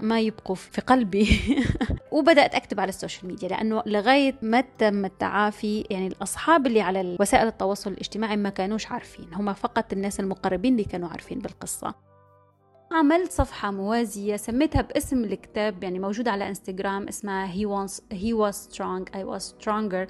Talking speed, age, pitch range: 150 wpm, 20-39, 200-245 Hz